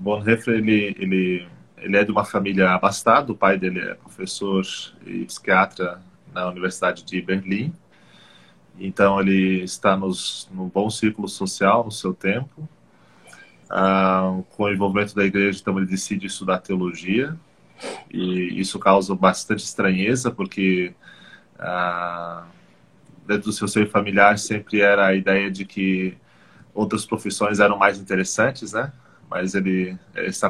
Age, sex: 20-39, male